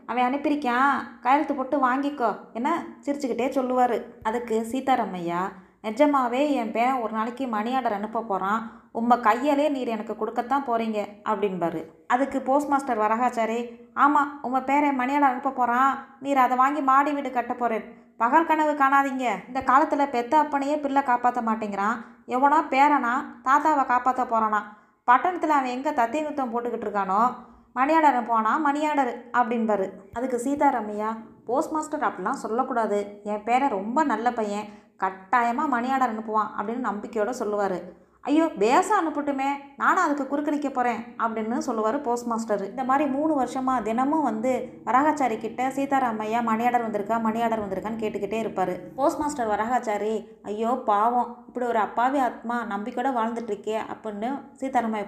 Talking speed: 130 wpm